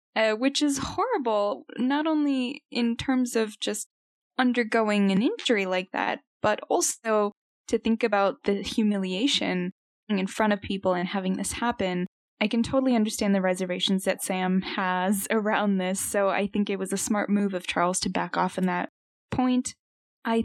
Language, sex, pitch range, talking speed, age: English, female, 185-230 Hz, 170 wpm, 10-29